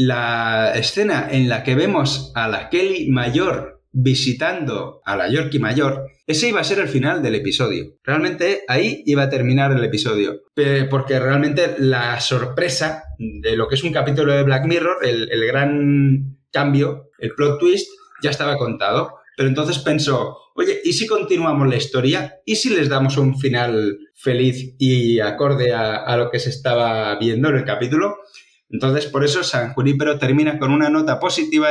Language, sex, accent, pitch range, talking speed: Spanish, male, Spanish, 125-150 Hz, 170 wpm